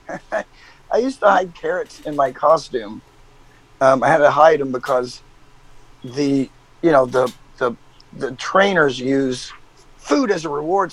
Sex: male